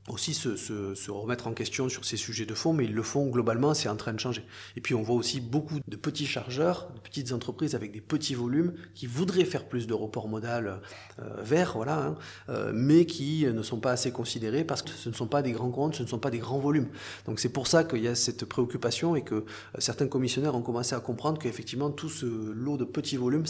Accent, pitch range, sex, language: French, 110-135 Hz, male, French